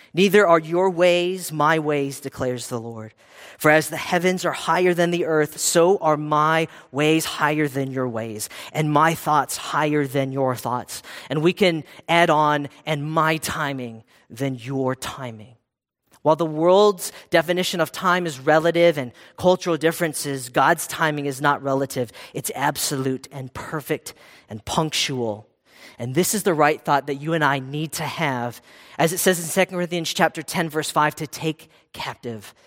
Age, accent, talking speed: 40-59, American, 170 wpm